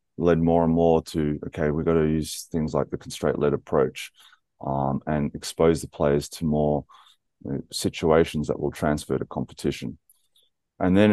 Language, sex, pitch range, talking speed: English, male, 75-85 Hz, 160 wpm